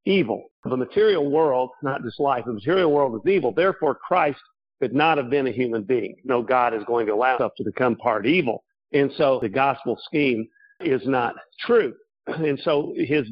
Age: 50-69